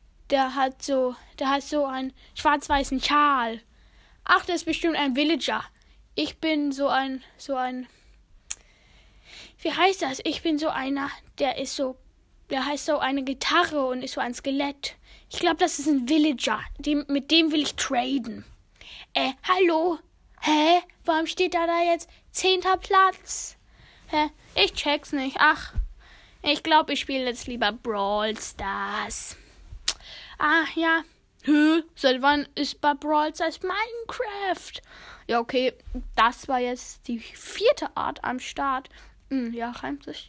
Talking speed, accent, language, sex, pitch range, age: 145 wpm, German, German, female, 260-325 Hz, 10-29